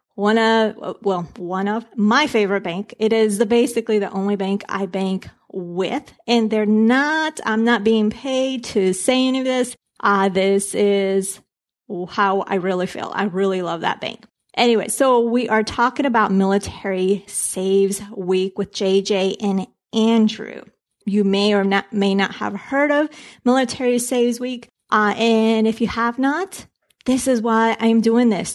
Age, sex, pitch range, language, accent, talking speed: 30-49, female, 195-230 Hz, English, American, 165 wpm